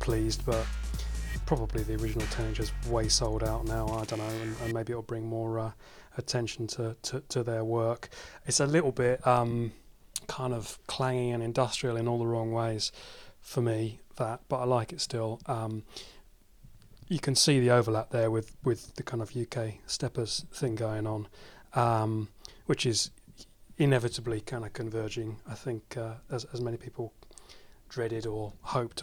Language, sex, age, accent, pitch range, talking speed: English, male, 30-49, British, 110-125 Hz, 170 wpm